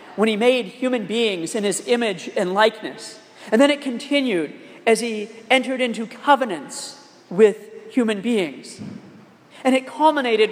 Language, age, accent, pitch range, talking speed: English, 40-59, American, 220-250 Hz, 145 wpm